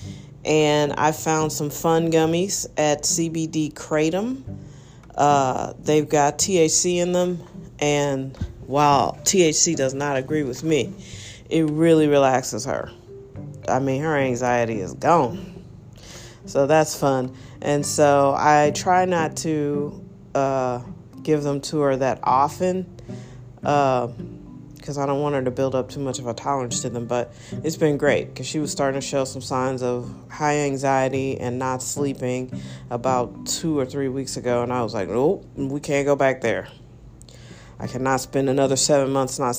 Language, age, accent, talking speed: English, 40-59, American, 160 wpm